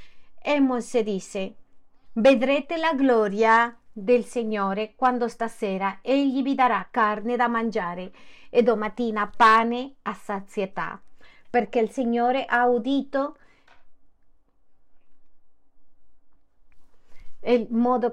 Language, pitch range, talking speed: Spanish, 200-250 Hz, 95 wpm